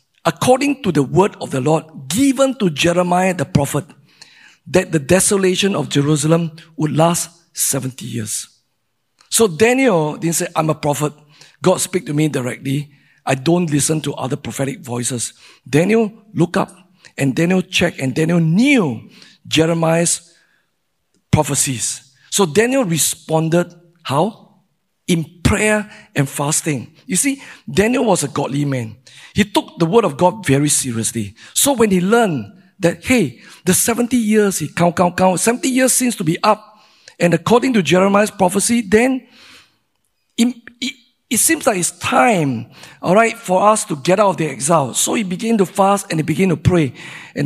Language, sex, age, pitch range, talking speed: English, male, 50-69, 145-195 Hz, 160 wpm